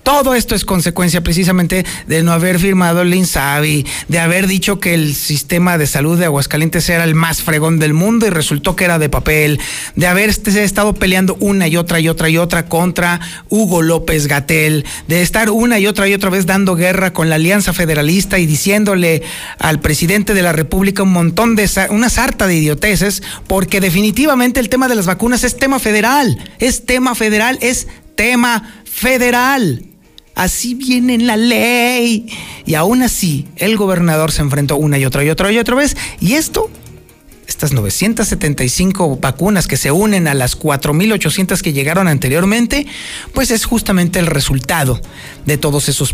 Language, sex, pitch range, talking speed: Spanish, male, 160-220 Hz, 175 wpm